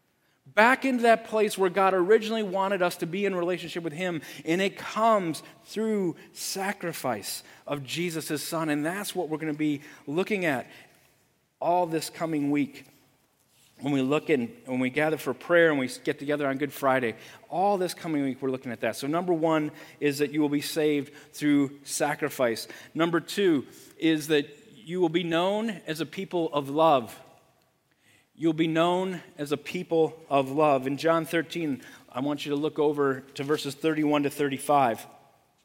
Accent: American